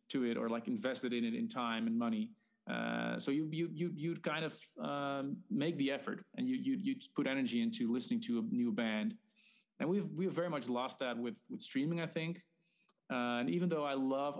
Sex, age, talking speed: male, 30-49, 220 wpm